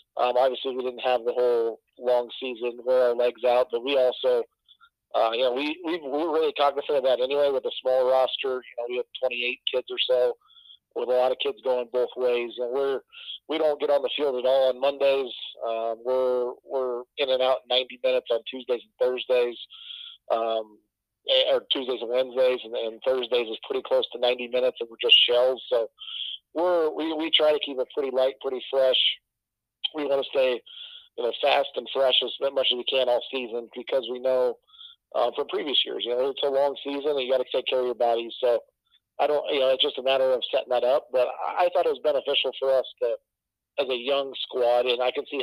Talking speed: 225 wpm